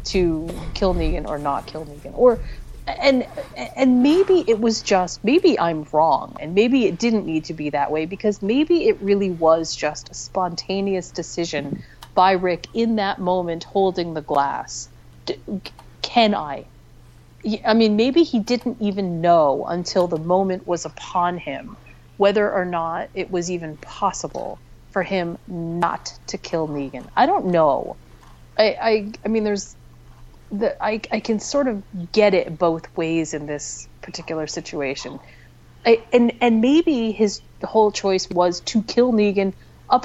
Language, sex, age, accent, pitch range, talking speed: English, female, 30-49, American, 150-205 Hz, 155 wpm